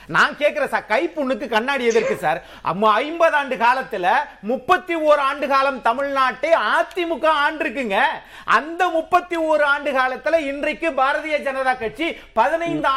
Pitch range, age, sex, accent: 255-315 Hz, 40-59, male, native